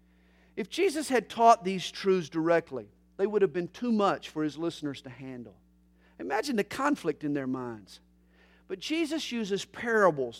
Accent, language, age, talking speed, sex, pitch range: American, English, 50-69, 160 wpm, male, 145-225 Hz